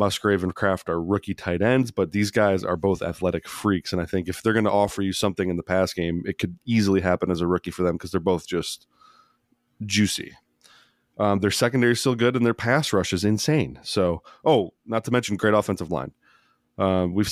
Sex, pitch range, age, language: male, 90-105 Hz, 20-39, English